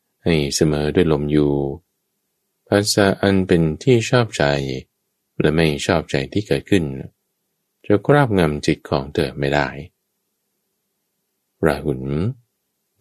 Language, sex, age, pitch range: Thai, male, 20-39, 70-95 Hz